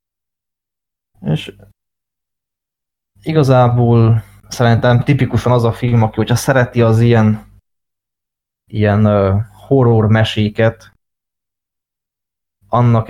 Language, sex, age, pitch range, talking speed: Hungarian, male, 20-39, 100-115 Hz, 75 wpm